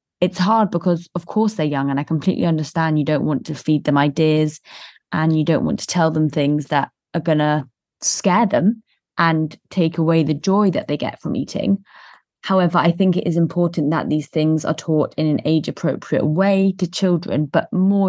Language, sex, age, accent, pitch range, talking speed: English, female, 20-39, British, 155-185 Hz, 205 wpm